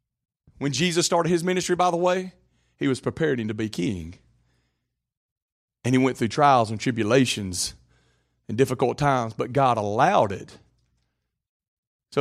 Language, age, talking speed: English, 40-59, 145 wpm